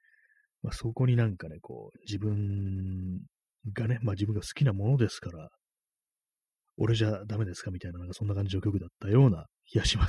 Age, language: 30-49, Japanese